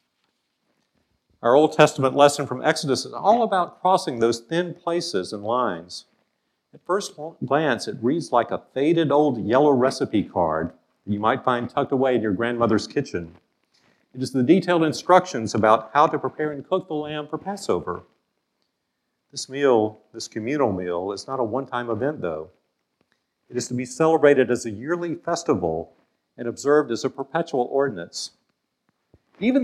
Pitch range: 115-165 Hz